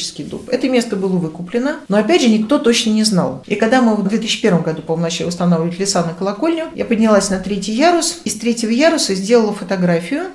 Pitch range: 180-250 Hz